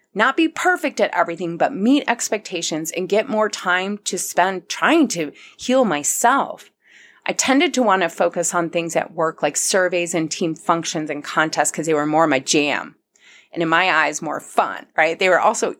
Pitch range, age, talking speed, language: 160-215 Hz, 30-49, 195 wpm, English